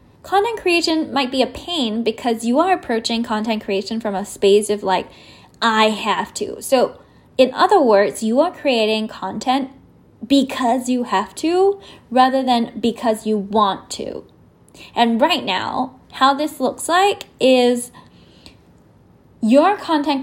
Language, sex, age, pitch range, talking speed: English, female, 10-29, 220-280 Hz, 140 wpm